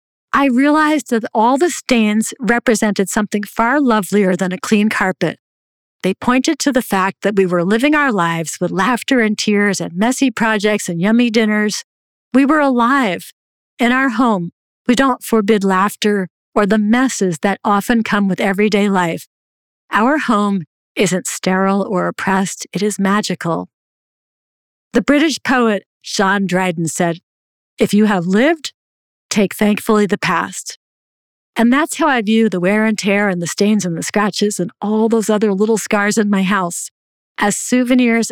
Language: English